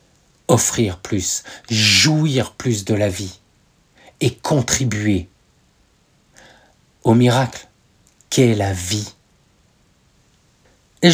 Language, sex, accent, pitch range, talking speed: French, male, French, 105-135 Hz, 80 wpm